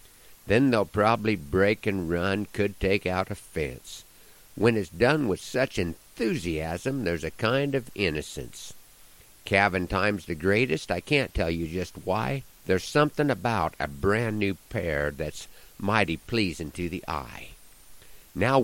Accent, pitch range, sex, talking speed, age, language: American, 90-110 Hz, male, 150 wpm, 50-69, English